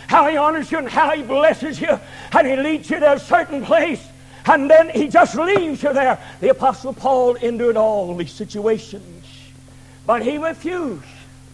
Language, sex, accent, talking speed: English, male, American, 175 wpm